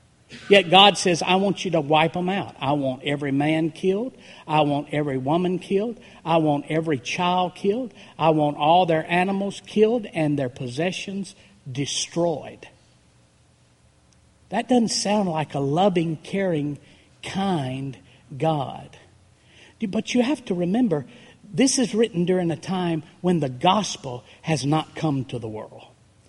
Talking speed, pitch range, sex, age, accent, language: 145 wpm, 140-205 Hz, male, 50-69, American, English